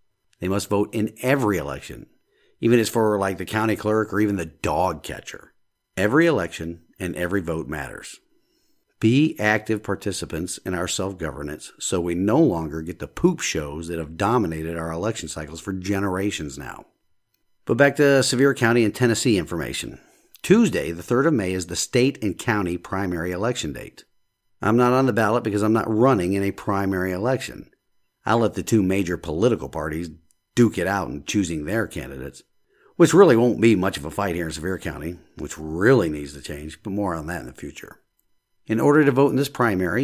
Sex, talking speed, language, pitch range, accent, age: male, 190 wpm, English, 85-115 Hz, American, 50-69